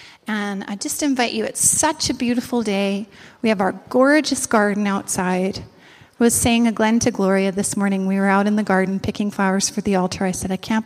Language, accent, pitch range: English, American, 195-255 Hz